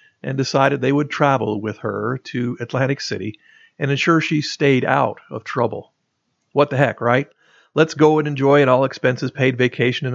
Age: 50-69